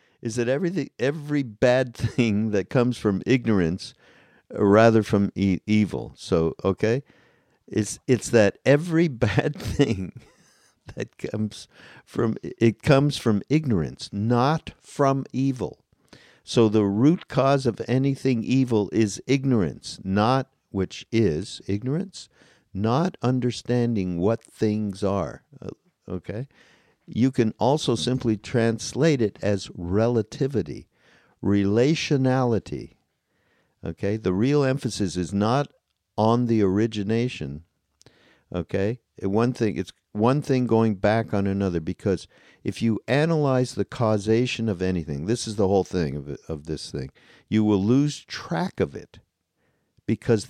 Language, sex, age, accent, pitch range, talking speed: English, male, 50-69, American, 100-130 Hz, 120 wpm